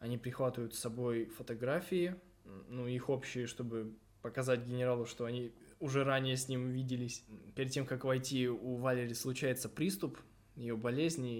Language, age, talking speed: Russian, 20-39, 145 wpm